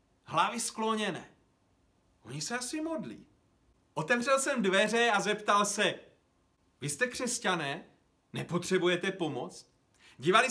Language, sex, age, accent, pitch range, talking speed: Czech, male, 40-59, native, 170-245 Hz, 105 wpm